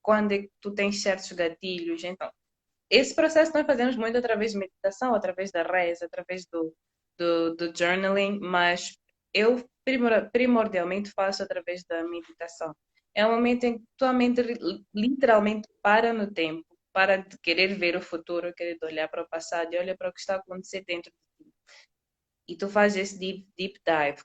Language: Portuguese